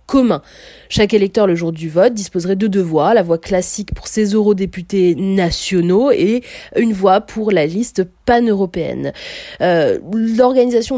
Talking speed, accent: 150 wpm, French